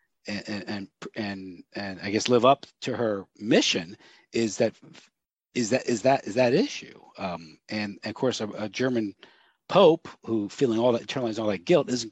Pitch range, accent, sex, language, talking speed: 105-125 Hz, American, male, English, 185 wpm